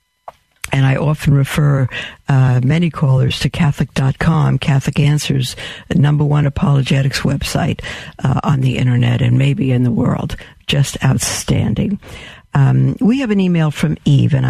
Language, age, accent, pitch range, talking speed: English, 60-79, American, 135-165 Hz, 145 wpm